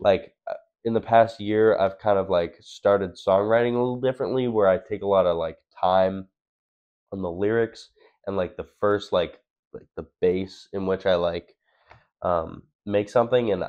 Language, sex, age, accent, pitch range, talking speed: English, male, 10-29, American, 90-115 Hz, 180 wpm